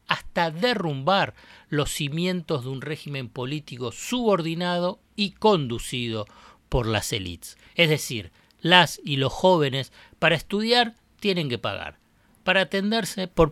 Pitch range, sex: 135-185 Hz, male